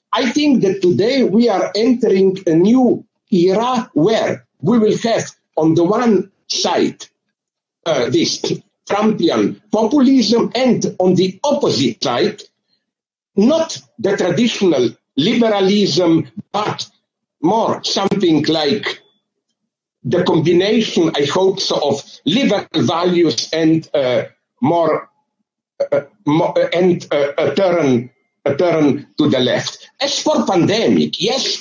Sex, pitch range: male, 165-235 Hz